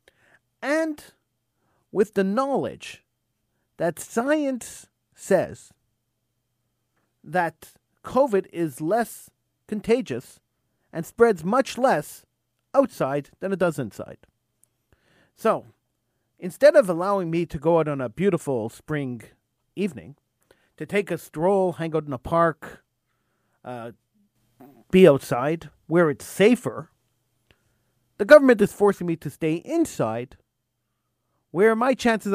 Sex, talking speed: male, 110 wpm